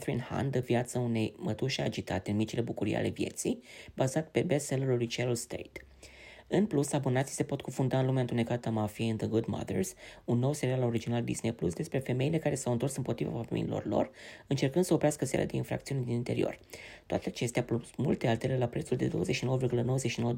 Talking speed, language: 190 wpm, Romanian